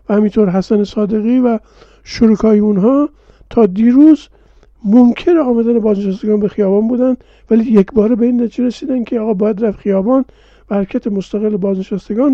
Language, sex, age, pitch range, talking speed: Persian, male, 50-69, 205-245 Hz, 140 wpm